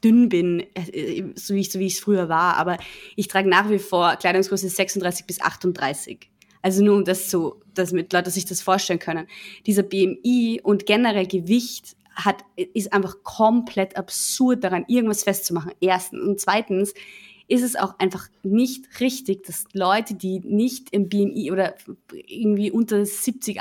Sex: female